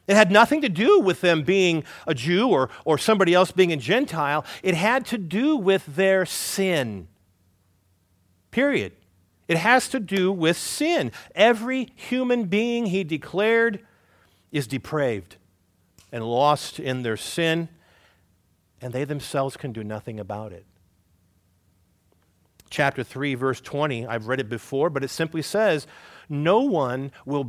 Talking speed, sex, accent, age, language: 145 wpm, male, American, 50-69, English